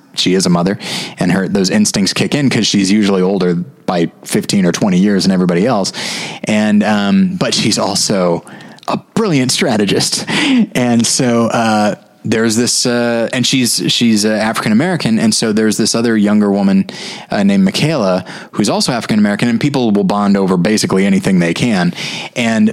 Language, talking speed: English, 175 wpm